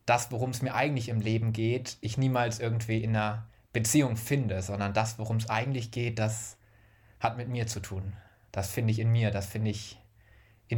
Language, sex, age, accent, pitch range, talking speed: German, male, 20-39, German, 110-130 Hz, 200 wpm